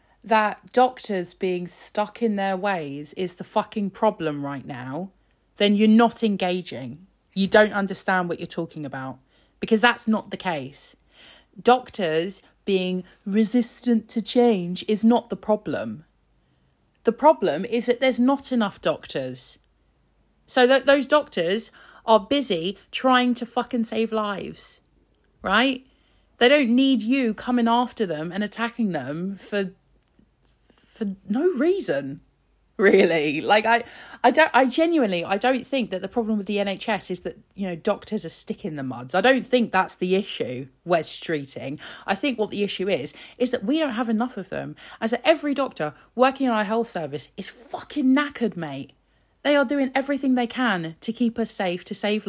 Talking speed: 165 wpm